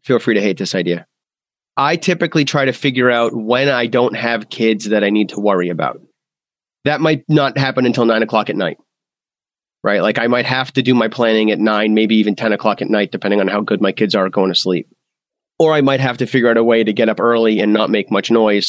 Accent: American